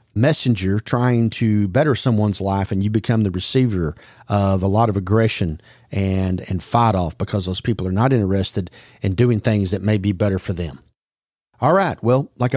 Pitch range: 100-125 Hz